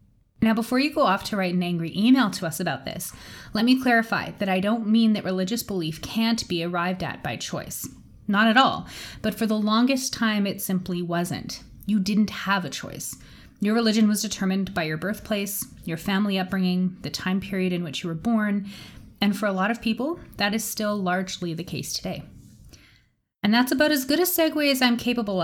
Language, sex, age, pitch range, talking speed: English, female, 30-49, 180-220 Hz, 205 wpm